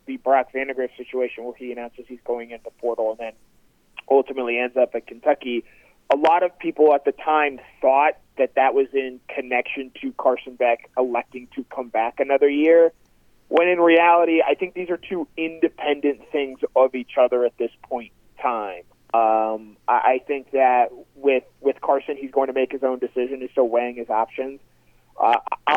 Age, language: 30-49, English